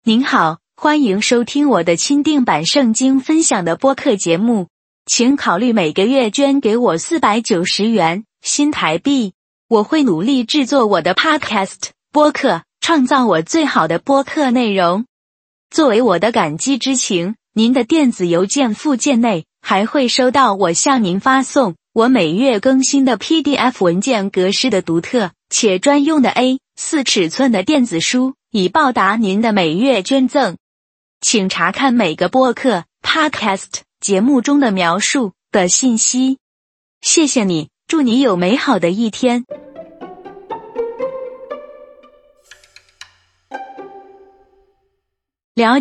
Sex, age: female, 20-39